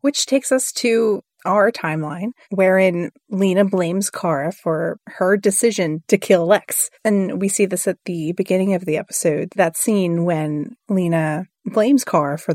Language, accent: English, American